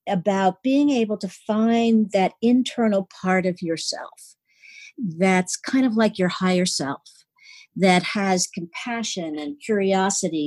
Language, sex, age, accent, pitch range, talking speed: English, female, 50-69, American, 170-215 Hz, 125 wpm